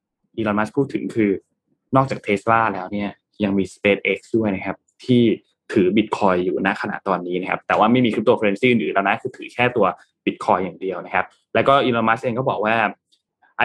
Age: 20-39